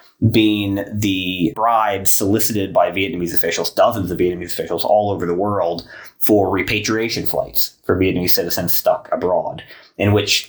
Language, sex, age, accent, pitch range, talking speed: English, male, 30-49, American, 90-110 Hz, 145 wpm